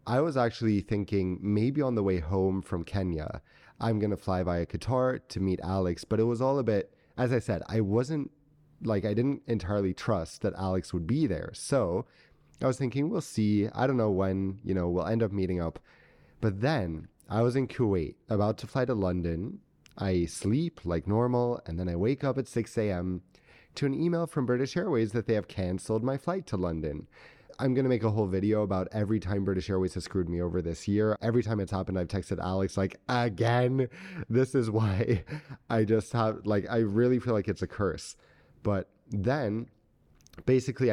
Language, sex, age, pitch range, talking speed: English, male, 30-49, 95-120 Hz, 200 wpm